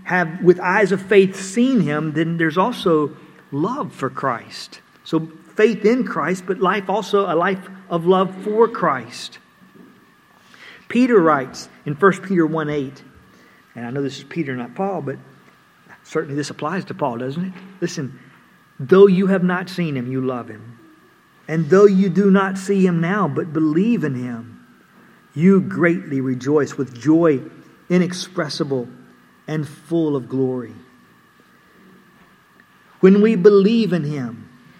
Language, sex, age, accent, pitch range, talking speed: English, male, 50-69, American, 145-190 Hz, 145 wpm